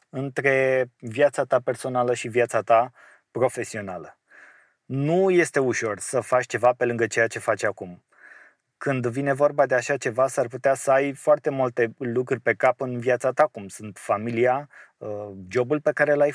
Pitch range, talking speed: 120-140 Hz, 165 wpm